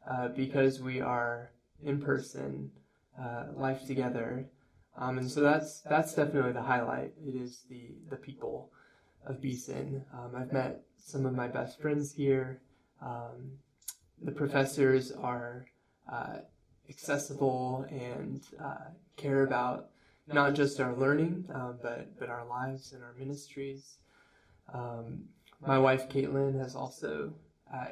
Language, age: English, 10-29